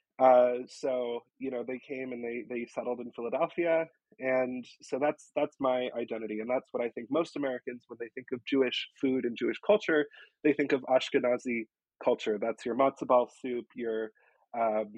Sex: male